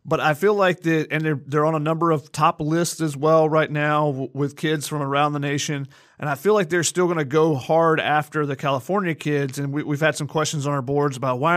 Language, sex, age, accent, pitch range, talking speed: English, male, 30-49, American, 140-160 Hz, 255 wpm